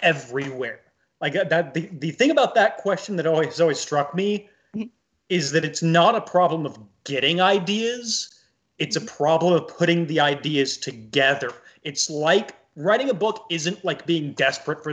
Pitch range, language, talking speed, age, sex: 140-190 Hz, English, 165 wpm, 30-49, male